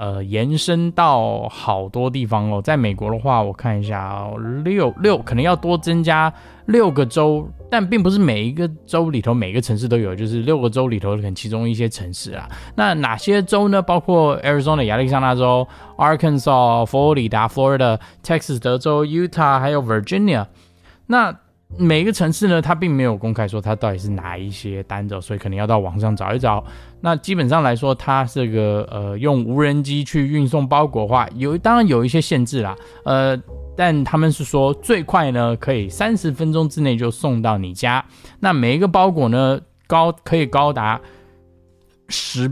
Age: 20-39